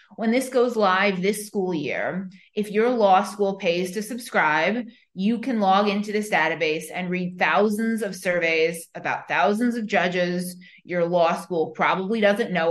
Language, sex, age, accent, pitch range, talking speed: English, female, 20-39, American, 175-230 Hz, 165 wpm